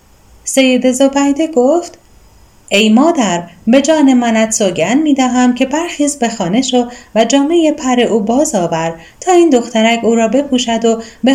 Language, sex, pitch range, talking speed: Persian, female, 215-290 Hz, 160 wpm